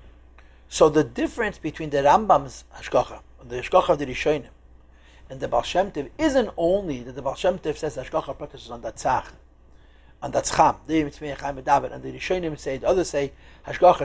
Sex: male